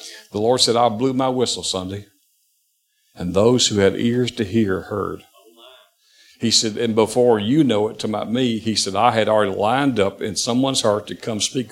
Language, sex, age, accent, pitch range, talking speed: English, male, 50-69, American, 100-130 Hz, 200 wpm